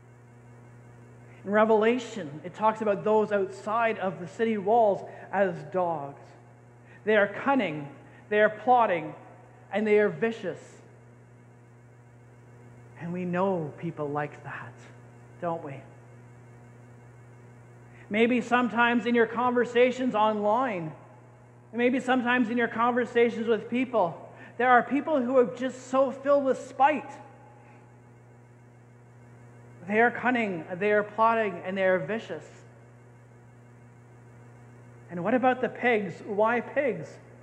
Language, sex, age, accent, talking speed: English, male, 40-59, American, 115 wpm